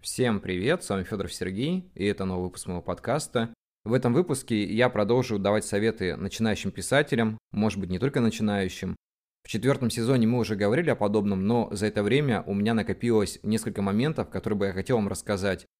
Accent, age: native, 20-39